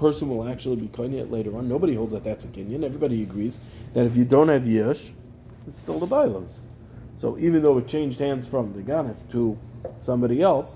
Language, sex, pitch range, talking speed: English, male, 115-125 Hz, 210 wpm